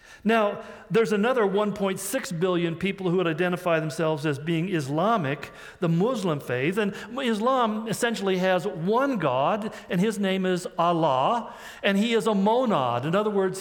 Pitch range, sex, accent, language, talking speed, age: 170-215 Hz, male, American, English, 155 wpm, 50-69